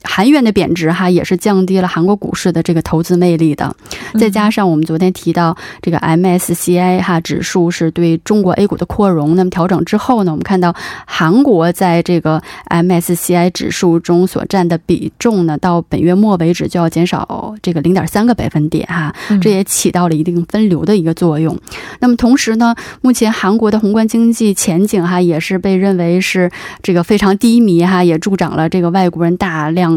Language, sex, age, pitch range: Korean, female, 20-39, 170-195 Hz